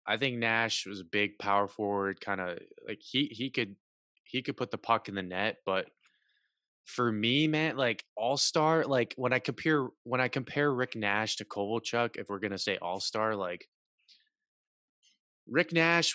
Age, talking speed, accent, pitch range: 20-39, 180 wpm, American, 100-135 Hz